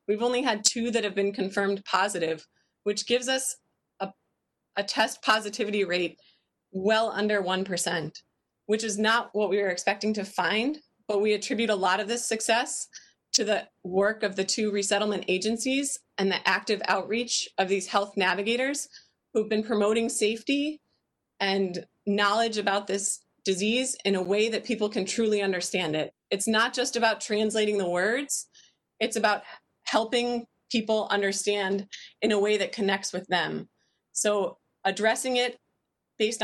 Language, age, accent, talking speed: English, 30-49, American, 155 wpm